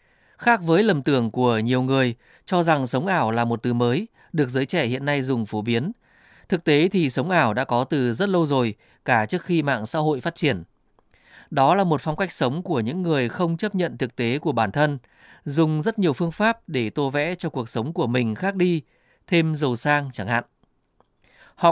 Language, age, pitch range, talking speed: Vietnamese, 20-39, 125-175 Hz, 220 wpm